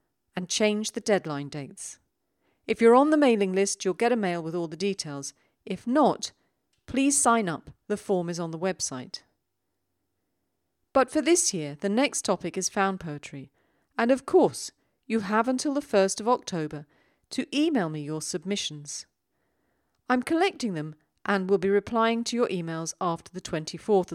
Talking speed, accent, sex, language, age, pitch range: 170 wpm, British, female, English, 40-59, 155-230 Hz